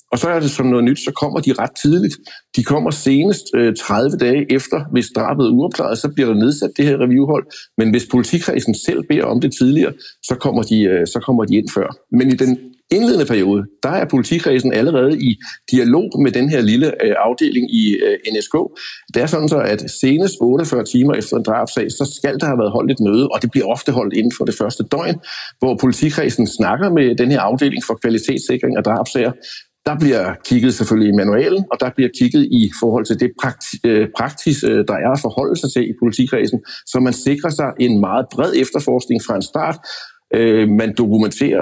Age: 60-79